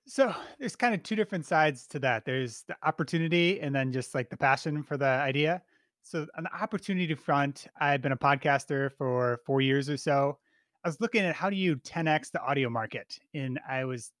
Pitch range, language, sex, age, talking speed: 125-155 Hz, English, male, 30-49, 210 wpm